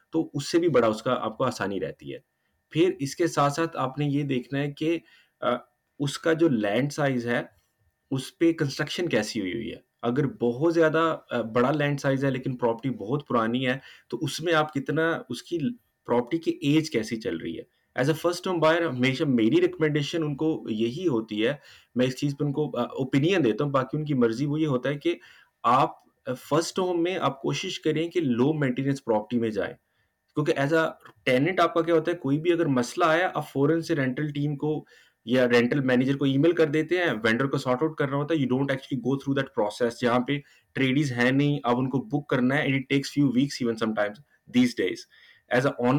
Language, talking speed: Urdu, 160 wpm